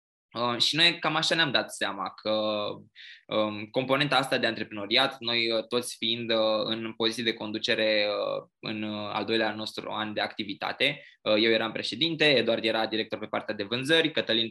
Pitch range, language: 110-130 Hz, Romanian